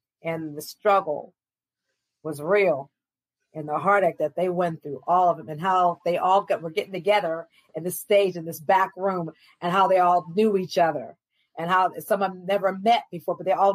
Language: English